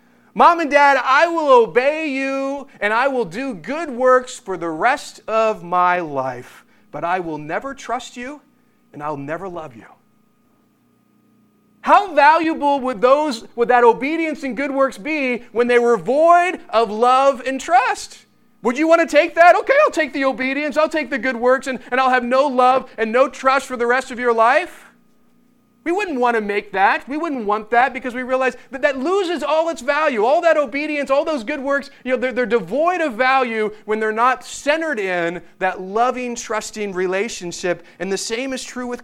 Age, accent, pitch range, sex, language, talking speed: 30-49, American, 225-290 Hz, male, English, 195 wpm